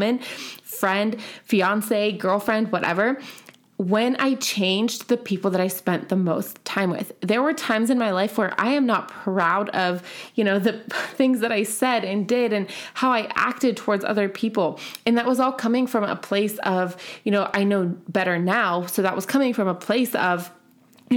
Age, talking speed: 20-39, 195 wpm